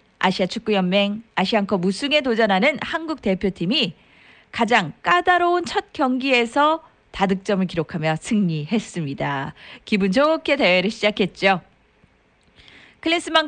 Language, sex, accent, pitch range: Korean, female, native, 190-300 Hz